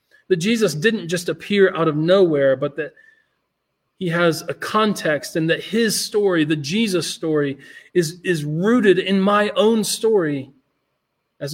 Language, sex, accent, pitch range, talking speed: English, male, American, 145-205 Hz, 150 wpm